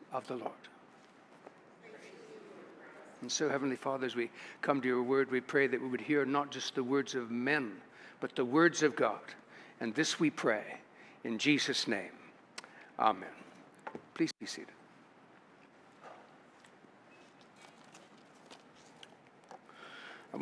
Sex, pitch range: male, 135-175 Hz